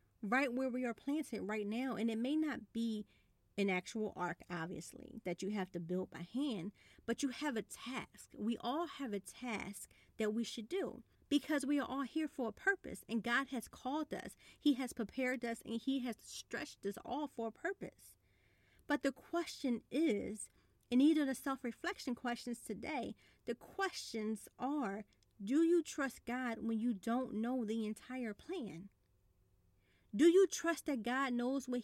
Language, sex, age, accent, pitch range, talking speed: English, female, 40-59, American, 215-275 Hz, 175 wpm